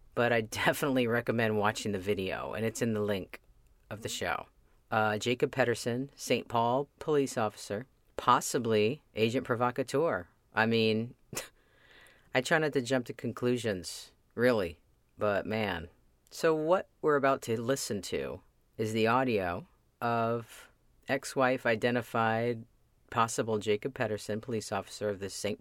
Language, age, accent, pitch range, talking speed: English, 40-59, American, 110-130 Hz, 135 wpm